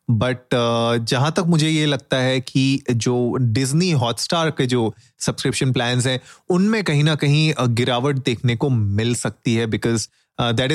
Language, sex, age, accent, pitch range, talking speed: Hindi, male, 30-49, native, 120-145 Hz, 160 wpm